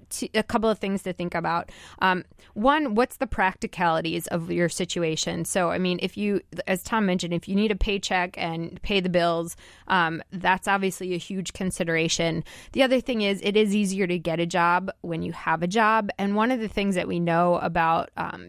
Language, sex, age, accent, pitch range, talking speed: English, female, 20-39, American, 175-205 Hz, 210 wpm